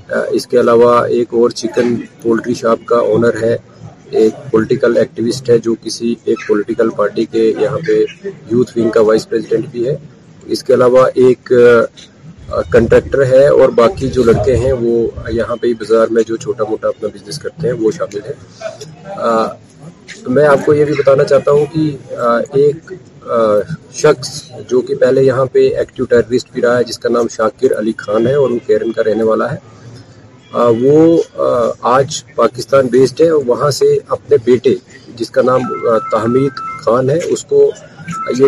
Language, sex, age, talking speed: Urdu, male, 40-59, 170 wpm